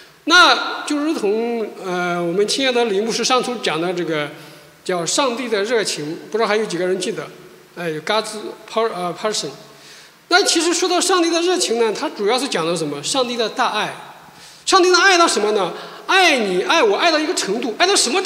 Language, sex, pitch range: Chinese, male, 215-355 Hz